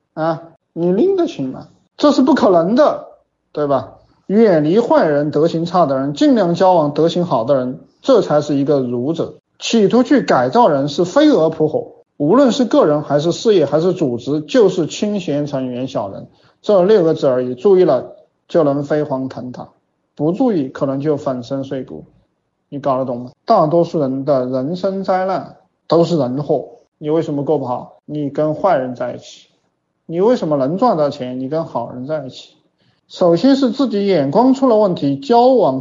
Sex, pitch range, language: male, 145-205 Hz, Chinese